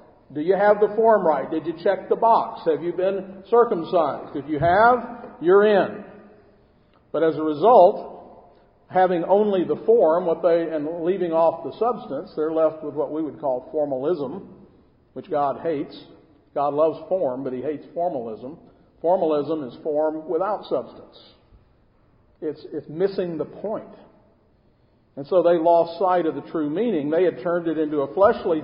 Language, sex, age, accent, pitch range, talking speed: English, male, 50-69, American, 155-190 Hz, 165 wpm